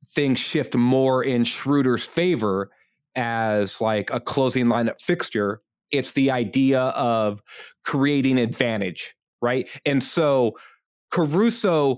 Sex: male